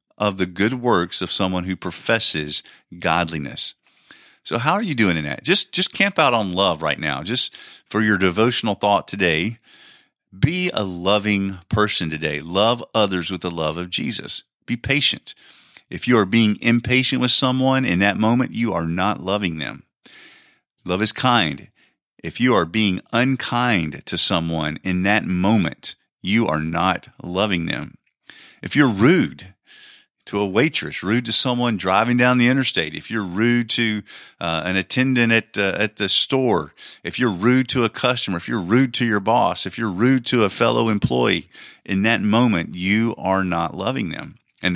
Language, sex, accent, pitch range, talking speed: English, male, American, 90-120 Hz, 175 wpm